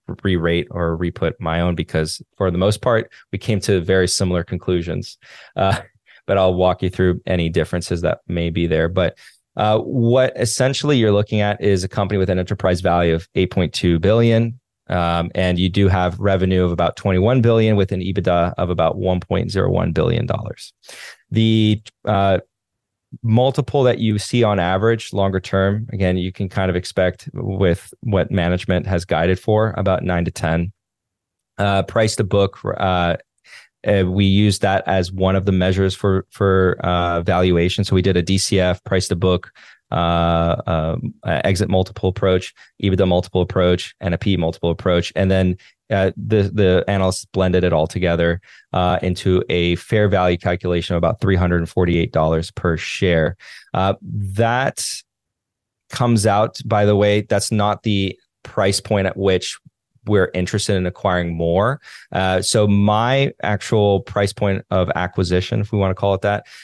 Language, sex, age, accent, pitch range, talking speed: English, male, 20-39, American, 90-105 Hz, 165 wpm